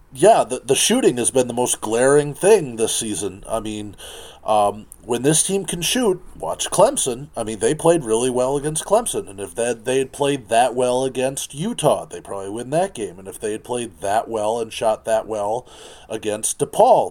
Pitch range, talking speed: 110-145 Hz, 205 wpm